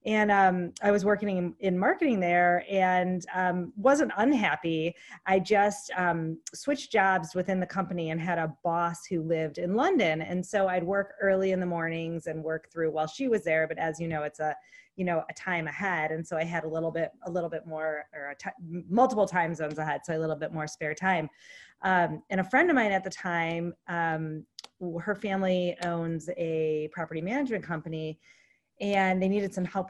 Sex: female